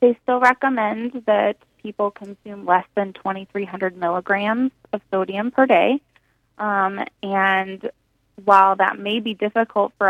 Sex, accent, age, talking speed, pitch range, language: female, American, 20-39, 130 wpm, 190-220 Hz, English